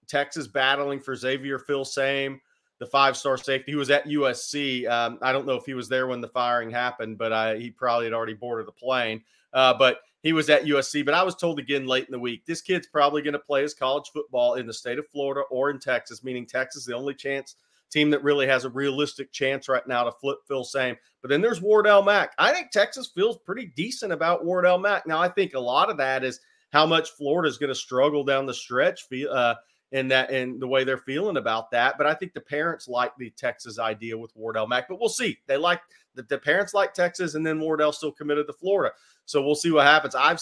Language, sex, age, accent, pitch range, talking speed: English, male, 30-49, American, 125-150 Hz, 240 wpm